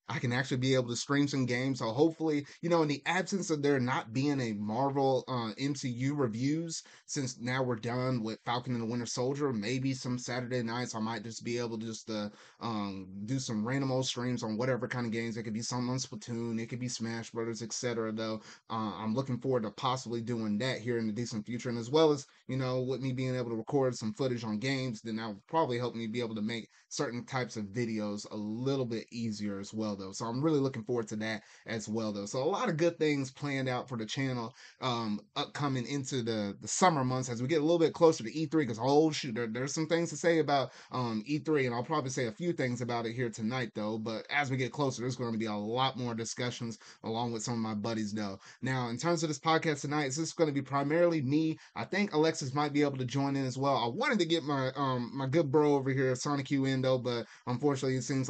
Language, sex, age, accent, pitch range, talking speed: English, male, 30-49, American, 115-140 Hz, 255 wpm